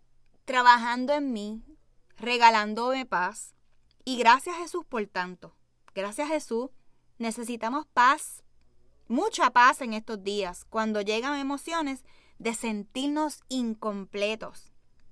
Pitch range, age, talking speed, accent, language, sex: 205-265 Hz, 20-39, 105 wpm, American, Spanish, female